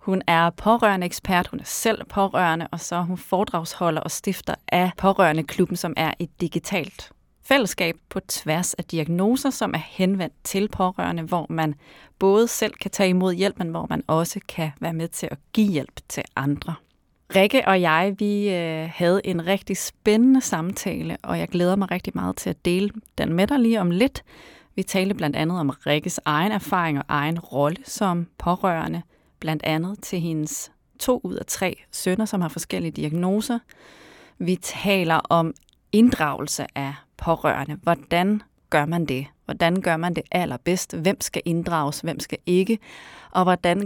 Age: 30-49